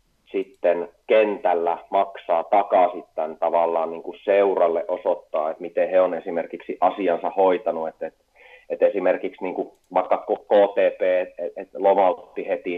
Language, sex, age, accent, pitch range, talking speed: Finnish, male, 30-49, native, 85-115 Hz, 135 wpm